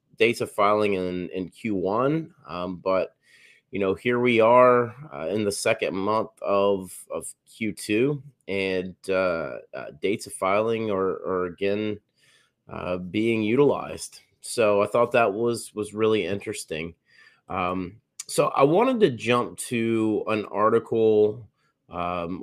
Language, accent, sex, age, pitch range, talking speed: English, American, male, 30-49, 95-115 Hz, 135 wpm